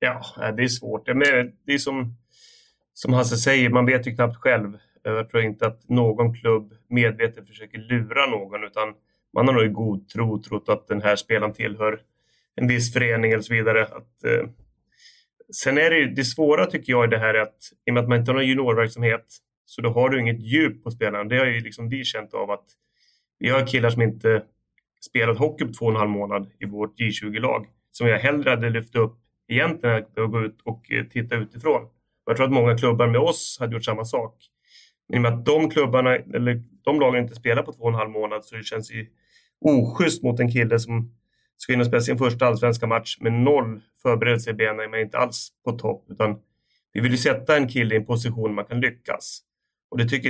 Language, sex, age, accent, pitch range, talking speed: Swedish, male, 30-49, native, 110-125 Hz, 215 wpm